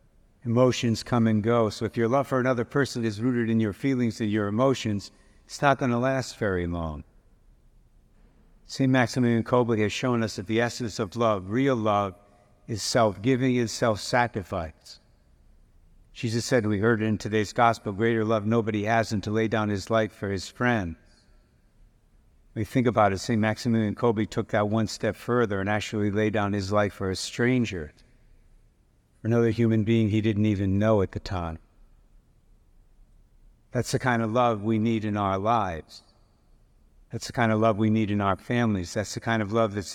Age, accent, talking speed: 50-69, American, 185 wpm